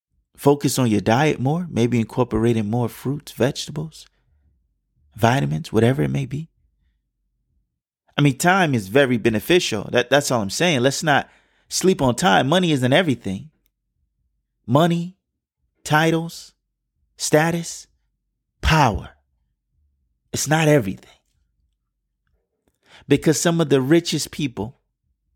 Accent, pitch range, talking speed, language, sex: American, 95-145 Hz, 110 wpm, English, male